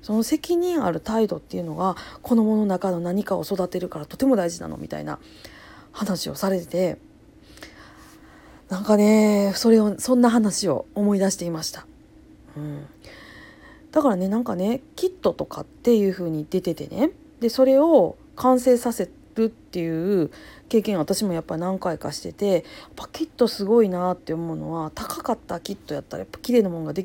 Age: 40-59